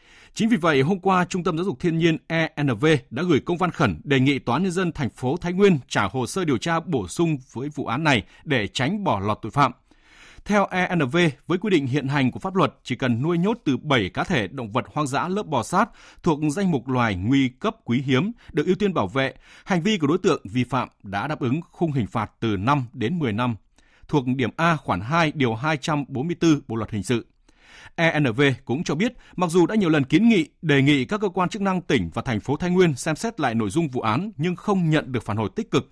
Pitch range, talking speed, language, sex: 120-175 Hz, 250 wpm, Vietnamese, male